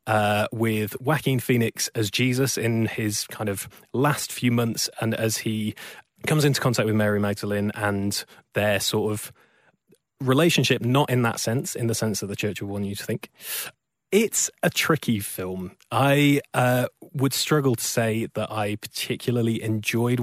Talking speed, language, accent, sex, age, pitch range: 165 wpm, English, British, male, 20-39, 110-130 Hz